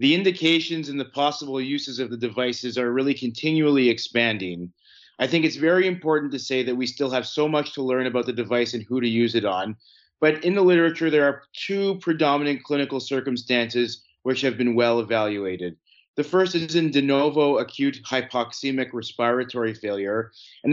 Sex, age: male, 30-49